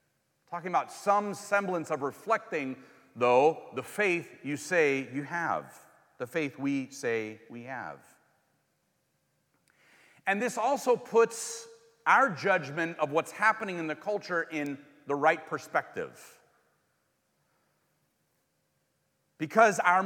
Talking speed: 110 wpm